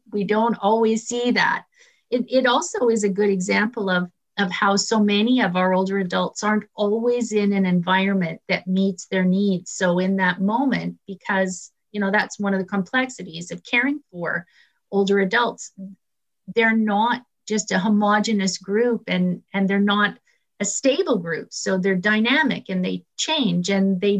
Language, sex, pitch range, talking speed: English, female, 190-230 Hz, 170 wpm